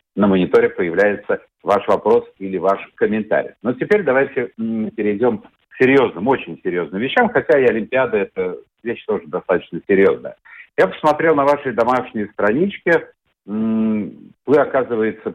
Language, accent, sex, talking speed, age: Russian, native, male, 130 wpm, 50-69